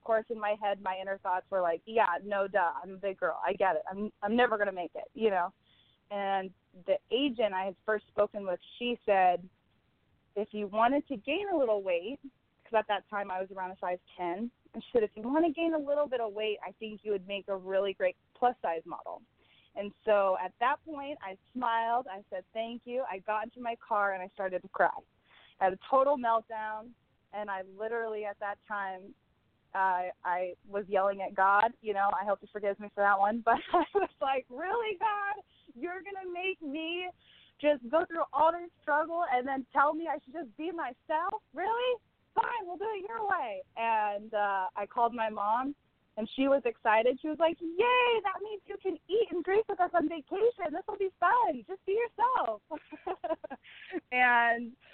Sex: female